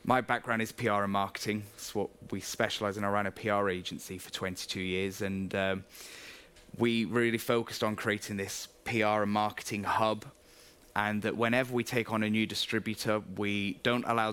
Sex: male